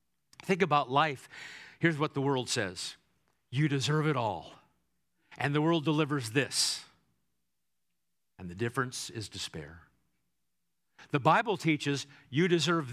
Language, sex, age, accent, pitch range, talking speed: English, male, 50-69, American, 120-175 Hz, 125 wpm